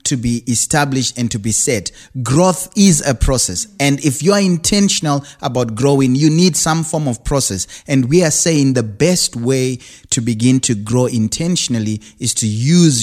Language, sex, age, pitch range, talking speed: English, male, 30-49, 110-140 Hz, 180 wpm